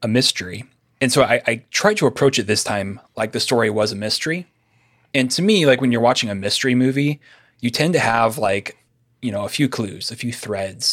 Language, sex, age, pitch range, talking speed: English, male, 30-49, 105-125 Hz, 220 wpm